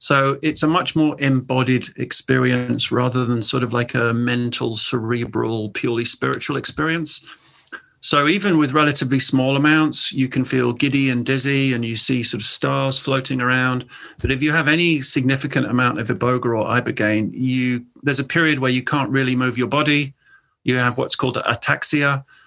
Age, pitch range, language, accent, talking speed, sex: 40-59, 125-145 Hz, English, British, 170 wpm, male